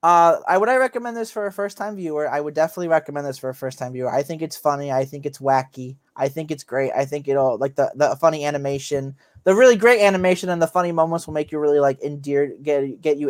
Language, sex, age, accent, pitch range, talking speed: English, male, 20-39, American, 135-155 Hz, 260 wpm